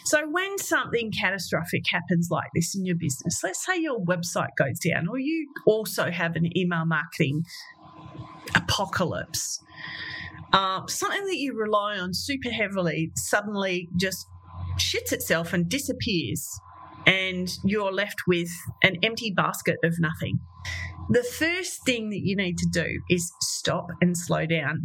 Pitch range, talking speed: 170-220 Hz, 145 wpm